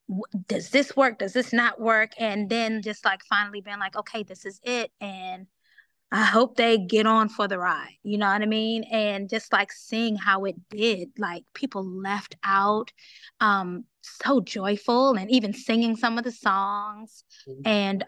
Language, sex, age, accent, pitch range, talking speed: English, female, 20-39, American, 195-230 Hz, 180 wpm